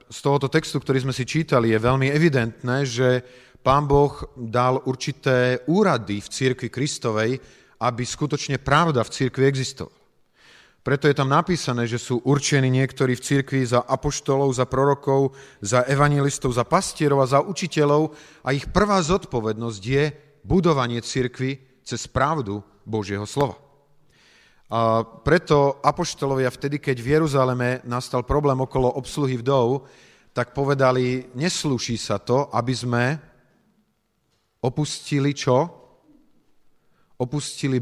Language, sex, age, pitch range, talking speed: Slovak, male, 40-59, 125-150 Hz, 125 wpm